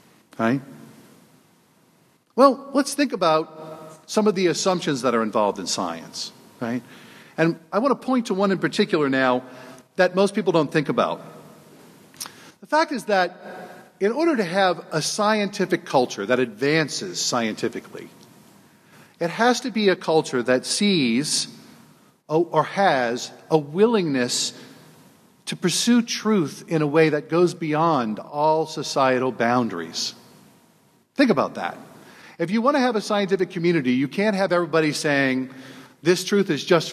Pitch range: 145-200 Hz